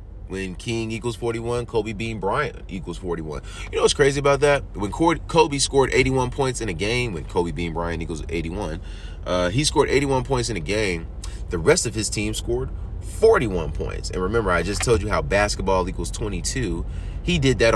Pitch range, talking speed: 90-120 Hz, 195 wpm